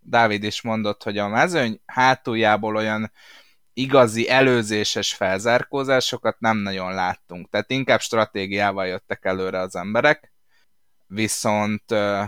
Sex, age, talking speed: male, 20-39, 110 wpm